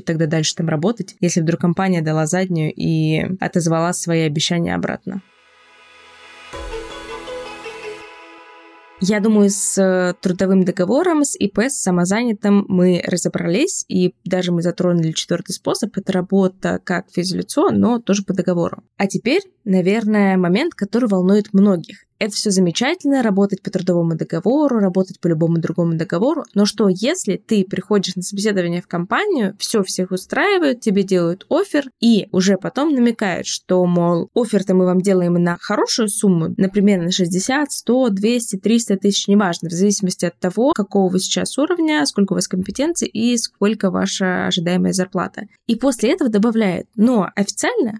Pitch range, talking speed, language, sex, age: 180-225 Hz, 145 wpm, Russian, female, 20-39